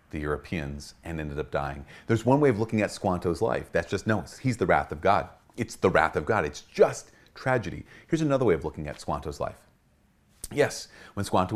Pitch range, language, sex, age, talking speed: 85-120 Hz, English, male, 30-49, 215 wpm